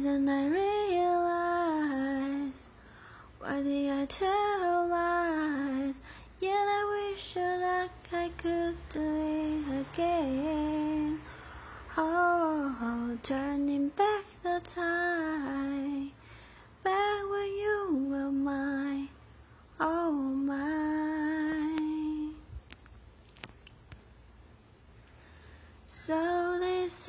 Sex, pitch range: female, 280-365 Hz